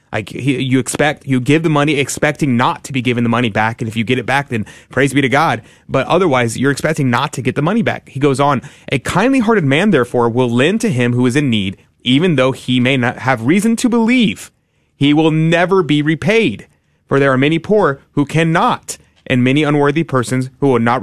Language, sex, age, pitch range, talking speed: English, male, 30-49, 125-165 Hz, 230 wpm